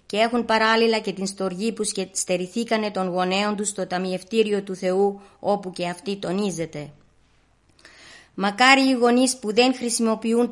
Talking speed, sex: 145 wpm, female